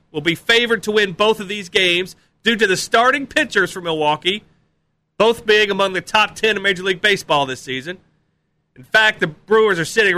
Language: English